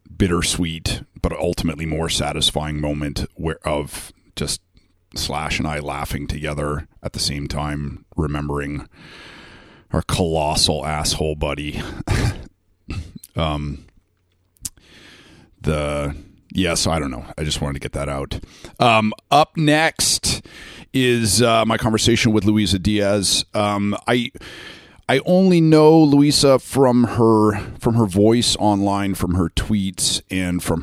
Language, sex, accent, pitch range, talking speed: English, male, American, 80-100 Hz, 125 wpm